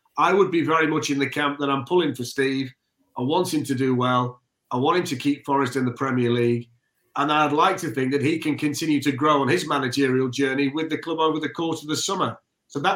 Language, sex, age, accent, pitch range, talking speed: English, male, 40-59, British, 140-175 Hz, 255 wpm